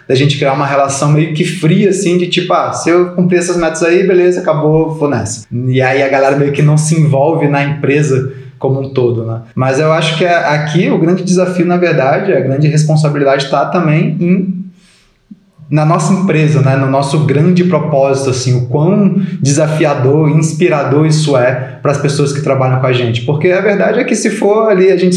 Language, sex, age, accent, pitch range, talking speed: Portuguese, male, 20-39, Brazilian, 135-165 Hz, 205 wpm